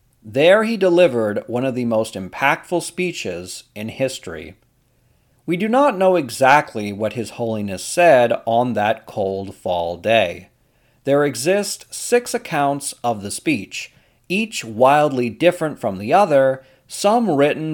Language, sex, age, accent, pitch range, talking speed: English, male, 40-59, American, 115-160 Hz, 135 wpm